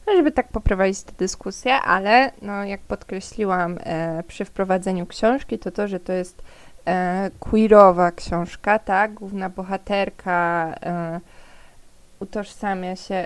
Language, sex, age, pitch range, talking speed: Polish, female, 20-39, 190-235 Hz, 105 wpm